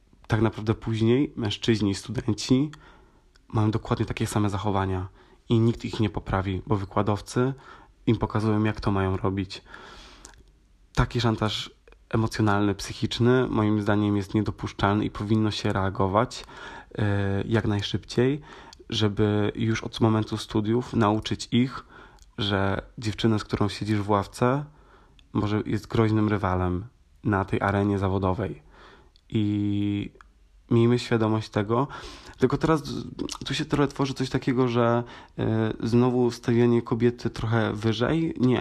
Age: 20-39